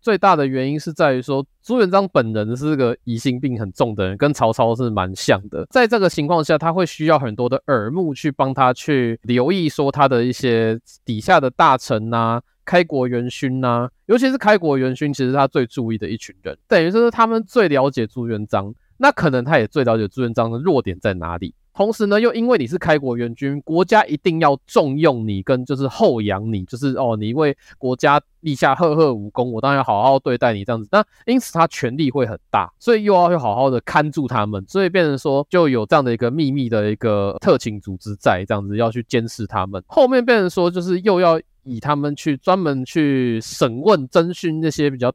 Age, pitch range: 20-39, 115-160 Hz